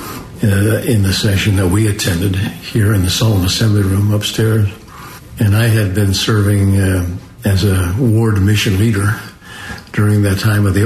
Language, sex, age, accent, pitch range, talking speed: English, male, 60-79, American, 100-110 Hz, 160 wpm